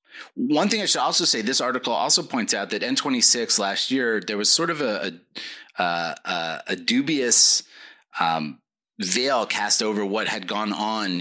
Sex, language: male, English